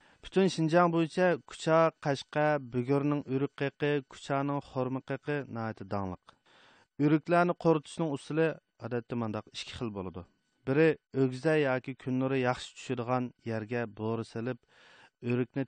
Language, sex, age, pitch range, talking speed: English, male, 40-59, 125-155 Hz, 110 wpm